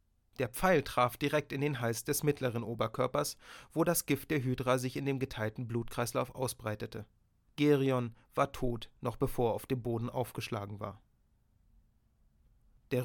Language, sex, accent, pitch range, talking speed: German, male, German, 120-145 Hz, 150 wpm